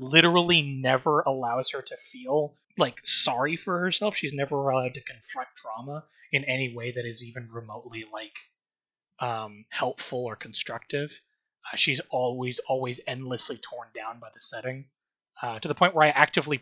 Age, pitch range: 20-39, 130-165 Hz